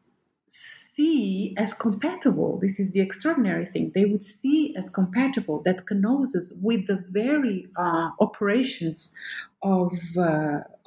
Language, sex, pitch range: English, female, 180-235 Hz